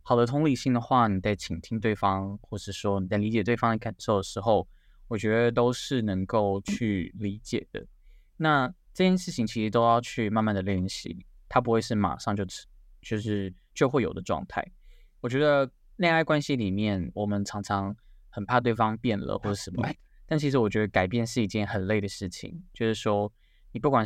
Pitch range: 100-125 Hz